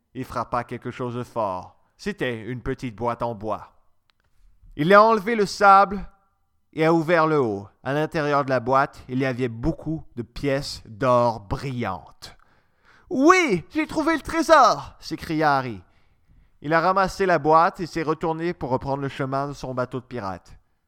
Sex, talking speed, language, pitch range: male, 175 wpm, French, 120-185 Hz